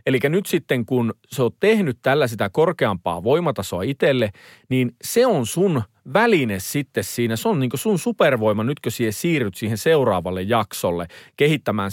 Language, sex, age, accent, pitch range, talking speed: Finnish, male, 40-59, native, 110-160 Hz, 165 wpm